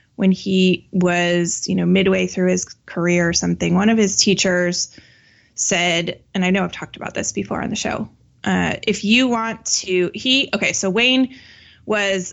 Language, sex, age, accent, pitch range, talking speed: English, female, 20-39, American, 180-210 Hz, 180 wpm